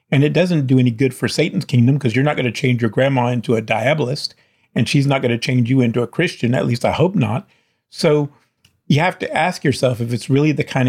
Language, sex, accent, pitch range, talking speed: English, male, American, 115-135 Hz, 255 wpm